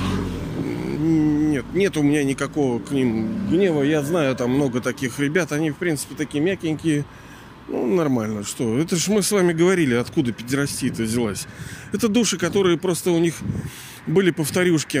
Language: Russian